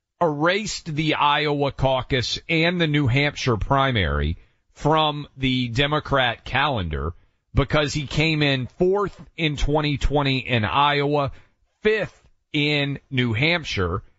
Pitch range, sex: 115-150 Hz, male